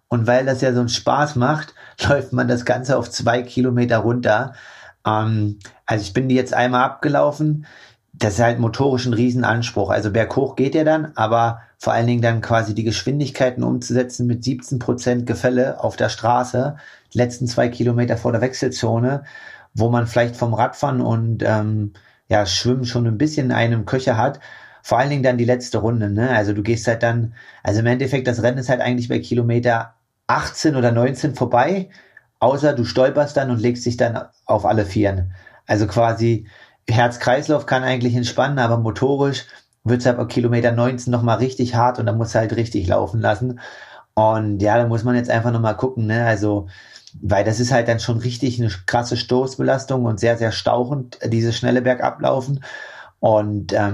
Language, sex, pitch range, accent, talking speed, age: German, male, 115-125 Hz, German, 180 wpm, 30-49